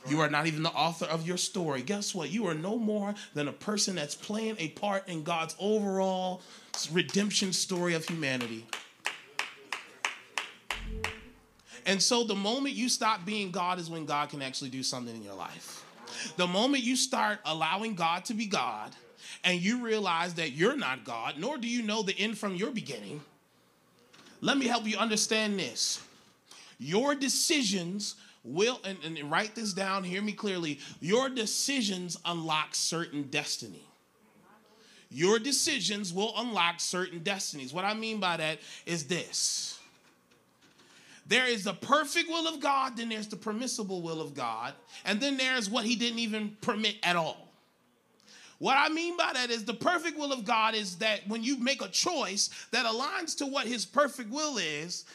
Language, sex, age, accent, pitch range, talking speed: English, male, 30-49, American, 170-235 Hz, 170 wpm